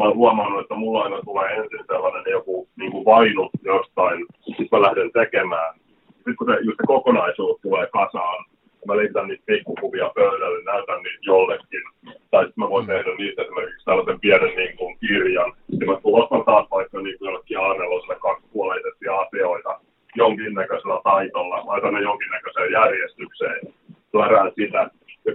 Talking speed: 150 wpm